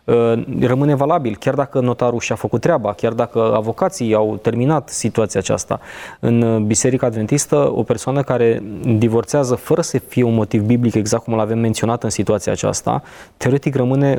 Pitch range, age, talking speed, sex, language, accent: 110-130 Hz, 20-39, 155 wpm, male, Romanian, native